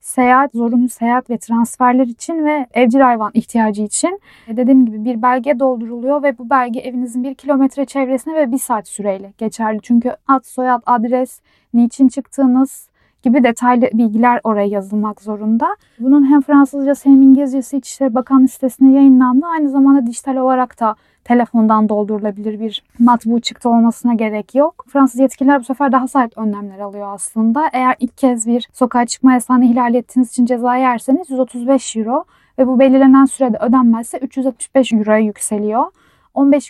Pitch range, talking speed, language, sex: 230-265 Hz, 155 wpm, Turkish, female